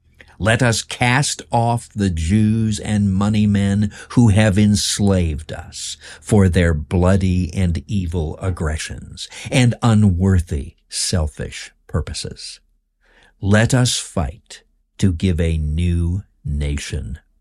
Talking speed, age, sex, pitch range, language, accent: 105 wpm, 60-79, male, 75-100 Hz, English, American